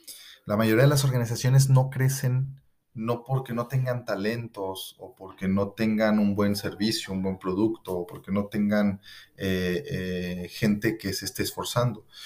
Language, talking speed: Spanish, 160 wpm